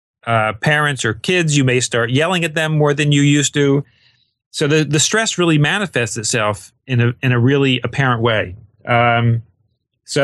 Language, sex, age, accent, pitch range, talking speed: English, male, 30-49, American, 120-145 Hz, 180 wpm